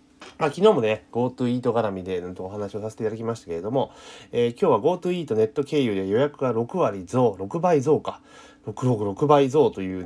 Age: 30-49